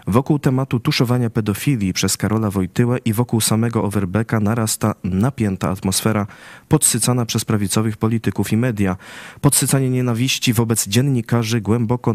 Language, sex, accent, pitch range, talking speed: Polish, male, native, 100-130 Hz, 125 wpm